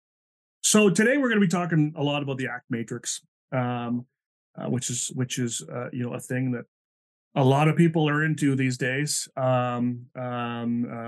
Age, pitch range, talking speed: 30-49, 120-145 Hz, 190 wpm